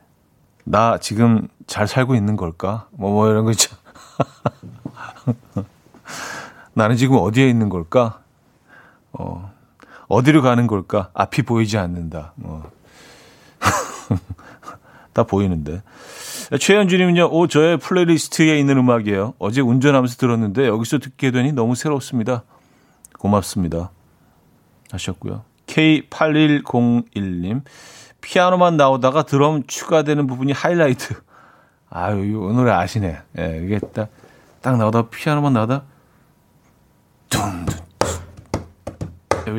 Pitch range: 105-140 Hz